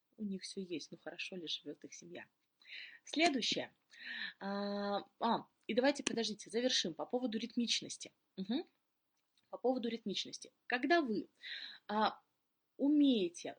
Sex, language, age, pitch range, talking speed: female, Russian, 20-39, 195-255 Hz, 105 wpm